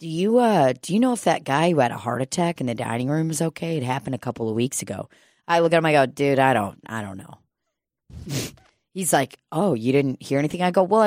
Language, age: English, 30-49